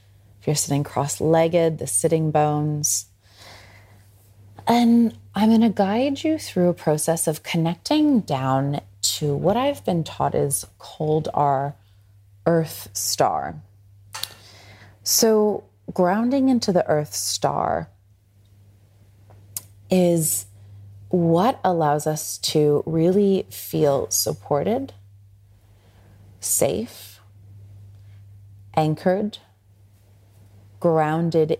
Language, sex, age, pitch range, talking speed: English, female, 30-49, 100-160 Hz, 85 wpm